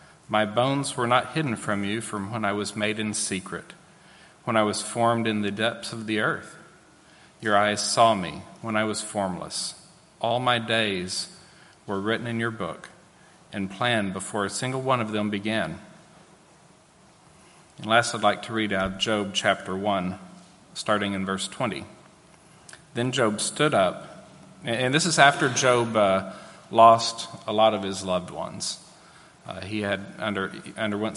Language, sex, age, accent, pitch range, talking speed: English, male, 40-59, American, 100-120 Hz, 160 wpm